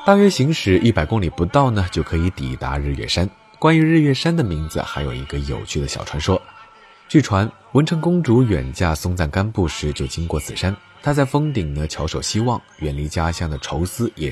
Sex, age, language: male, 20-39, Chinese